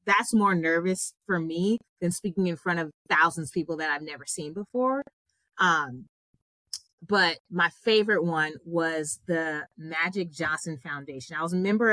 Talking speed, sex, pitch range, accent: 160 wpm, female, 160-200 Hz, American